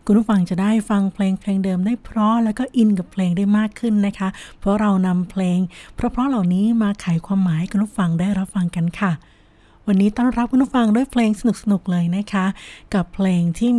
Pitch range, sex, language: 190-230 Hz, female, Thai